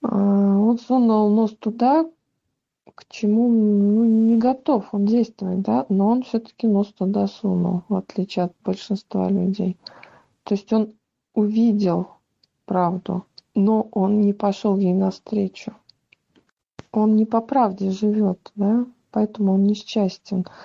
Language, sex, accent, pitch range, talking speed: Russian, female, native, 190-220 Hz, 125 wpm